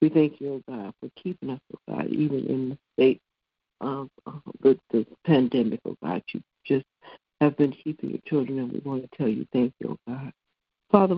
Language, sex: English, female